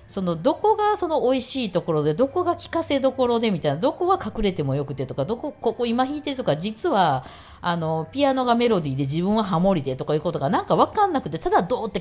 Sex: female